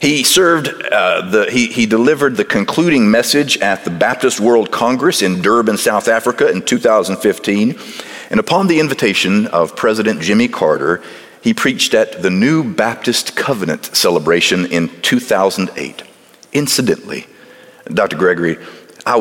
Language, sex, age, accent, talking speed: English, male, 50-69, American, 135 wpm